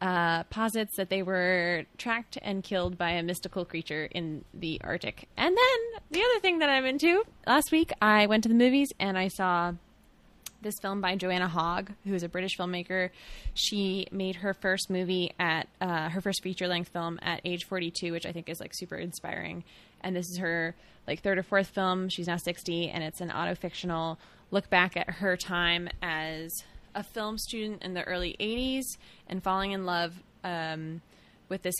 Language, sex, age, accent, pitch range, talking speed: English, female, 20-39, American, 170-195 Hz, 190 wpm